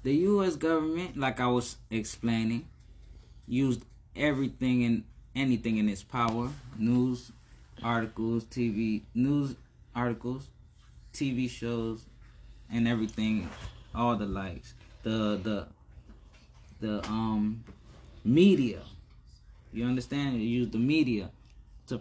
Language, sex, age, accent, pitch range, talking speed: English, male, 20-39, American, 100-120 Hz, 105 wpm